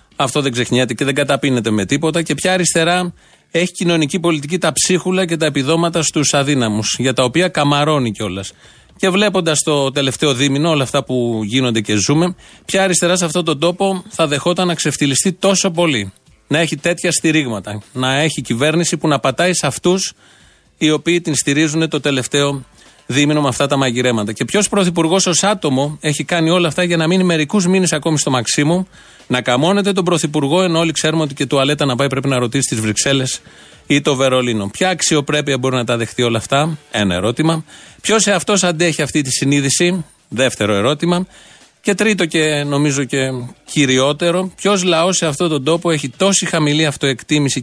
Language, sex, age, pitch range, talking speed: Greek, male, 30-49, 135-175 Hz, 180 wpm